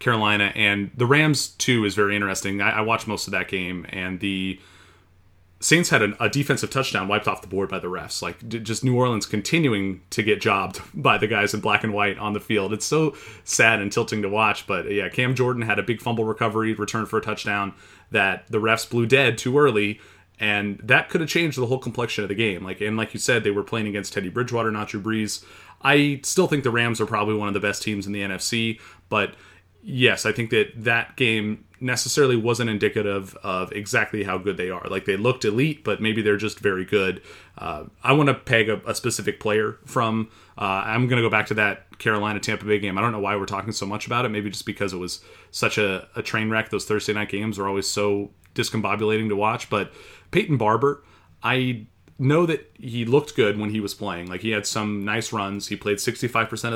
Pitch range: 100-120 Hz